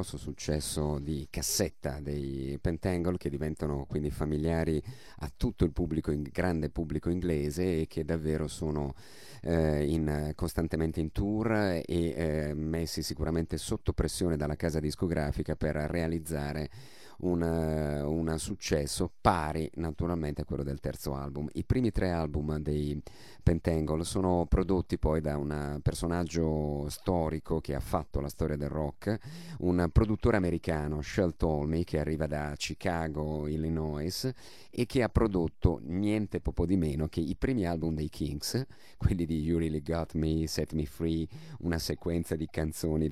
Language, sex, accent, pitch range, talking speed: Italian, male, native, 75-85 Hz, 145 wpm